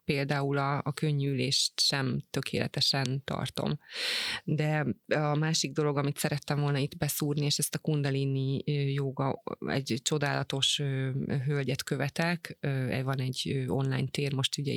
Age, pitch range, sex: 20-39, 140-155 Hz, female